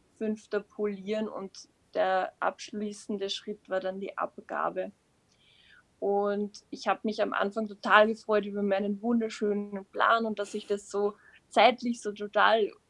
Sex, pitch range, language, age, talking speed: female, 195-210 Hz, German, 20-39, 135 wpm